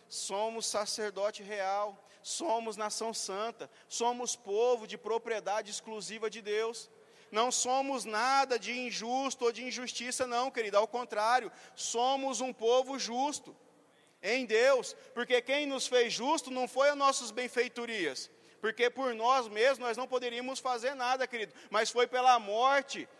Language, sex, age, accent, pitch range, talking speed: Portuguese, male, 40-59, Brazilian, 220-255 Hz, 140 wpm